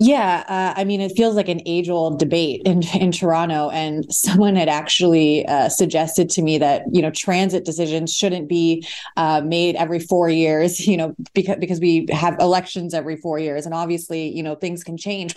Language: English